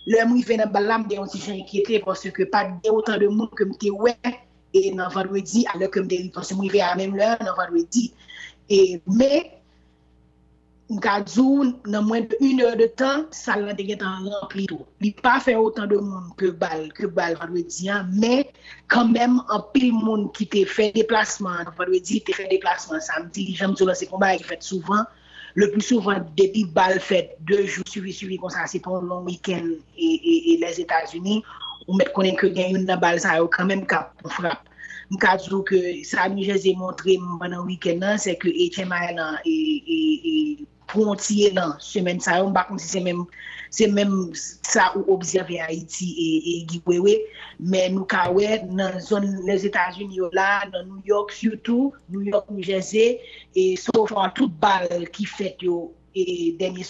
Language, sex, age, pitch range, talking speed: English, female, 30-49, 185-215 Hz, 155 wpm